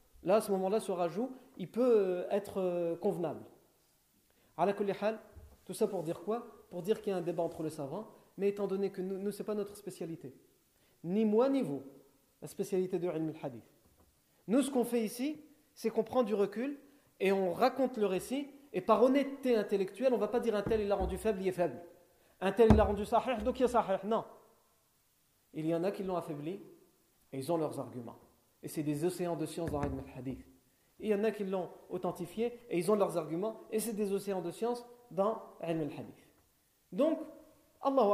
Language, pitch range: French, 165-220 Hz